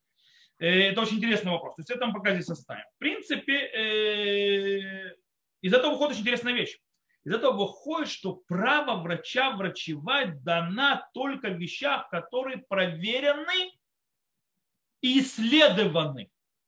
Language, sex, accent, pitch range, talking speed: Russian, male, native, 190-280 Hz, 120 wpm